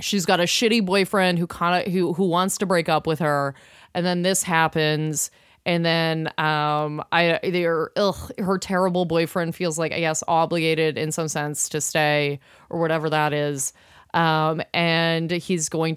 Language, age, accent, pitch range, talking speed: English, 30-49, American, 155-180 Hz, 175 wpm